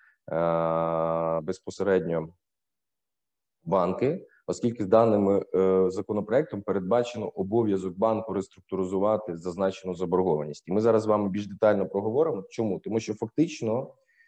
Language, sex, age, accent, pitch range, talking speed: Ukrainian, male, 20-39, native, 95-115 Hz, 95 wpm